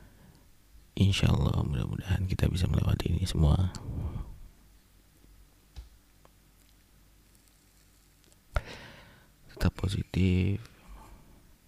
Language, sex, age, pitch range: Indonesian, male, 50-69, 85-100 Hz